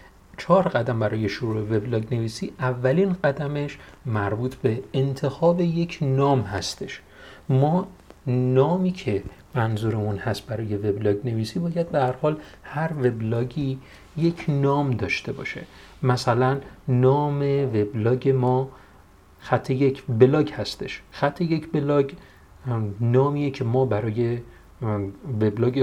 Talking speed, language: 110 wpm, Persian